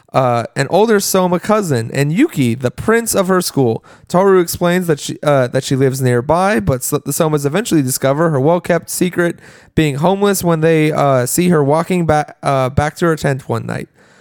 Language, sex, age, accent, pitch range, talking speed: English, male, 20-39, American, 140-185 Hz, 190 wpm